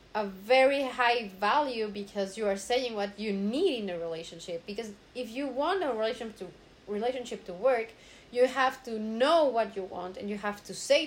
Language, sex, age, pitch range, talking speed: English, female, 30-49, 210-270 Hz, 190 wpm